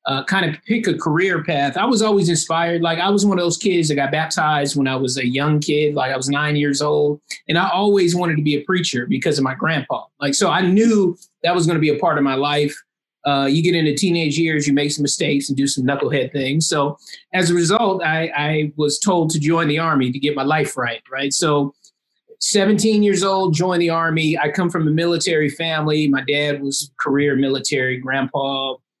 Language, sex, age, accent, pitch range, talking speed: English, male, 30-49, American, 145-180 Hz, 230 wpm